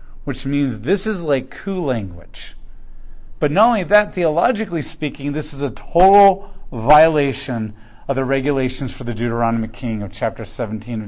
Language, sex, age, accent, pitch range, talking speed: English, male, 40-59, American, 115-155 Hz, 155 wpm